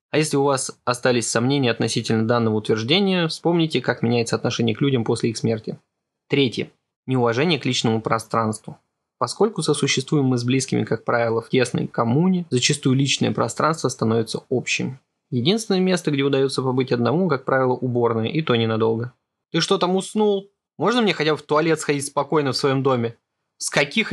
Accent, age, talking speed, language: native, 20-39, 165 wpm, Russian